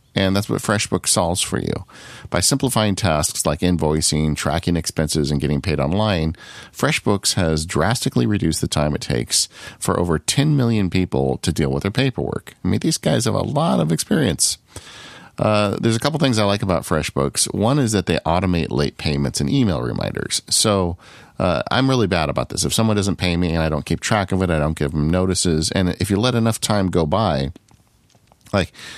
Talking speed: 200 wpm